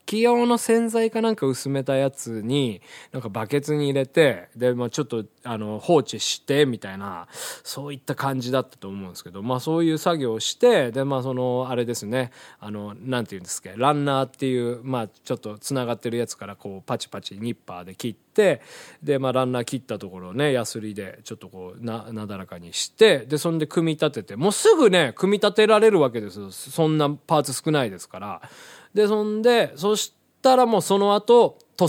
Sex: male